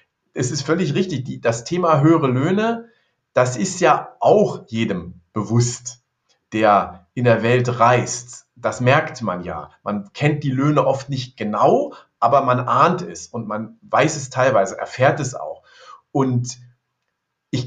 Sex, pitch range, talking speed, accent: male, 120-160 Hz, 150 wpm, German